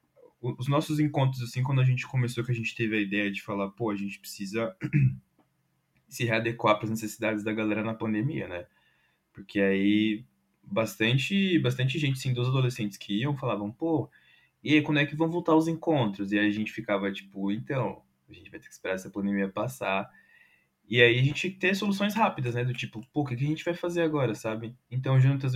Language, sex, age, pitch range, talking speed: Portuguese, male, 20-39, 100-130 Hz, 210 wpm